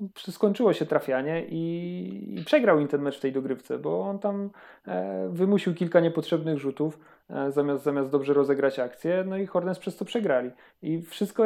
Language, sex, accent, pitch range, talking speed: Polish, male, native, 130-175 Hz, 180 wpm